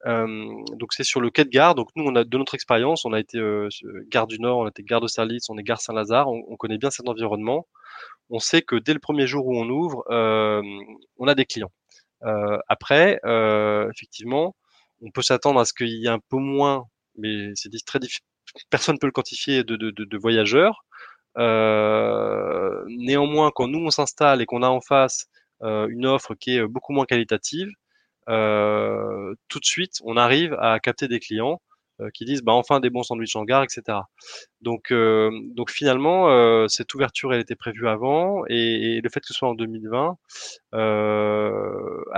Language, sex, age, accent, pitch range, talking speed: French, male, 20-39, French, 110-135 Hz, 205 wpm